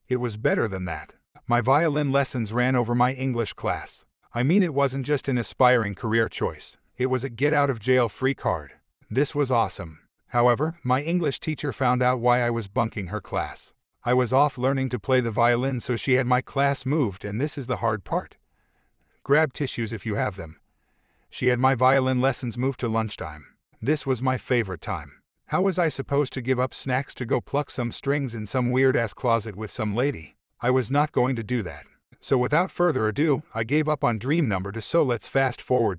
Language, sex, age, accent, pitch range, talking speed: English, male, 50-69, American, 115-135 Hz, 215 wpm